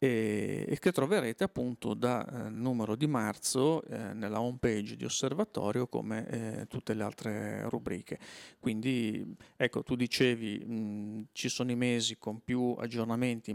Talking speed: 140 wpm